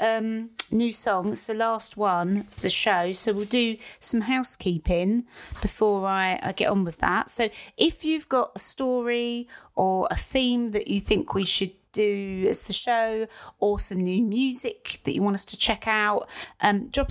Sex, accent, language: female, British, English